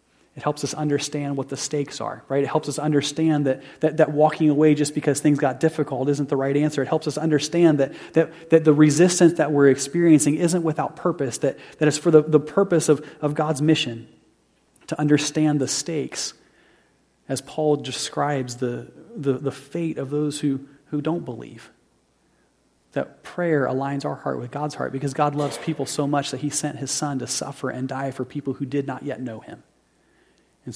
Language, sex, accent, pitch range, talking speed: English, male, American, 140-155 Hz, 200 wpm